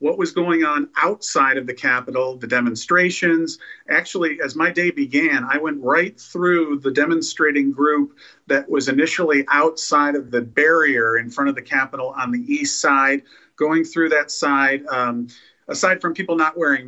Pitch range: 140-180 Hz